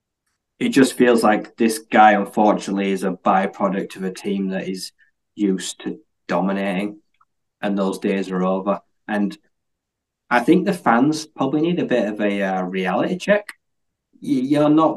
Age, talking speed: 20-39, 155 wpm